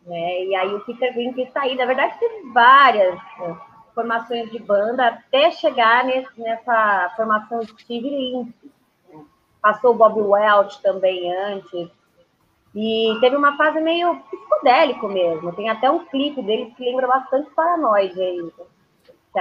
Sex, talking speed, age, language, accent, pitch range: female, 140 wpm, 20-39, Portuguese, Brazilian, 215-290 Hz